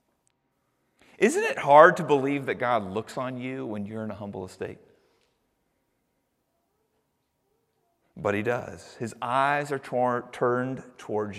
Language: English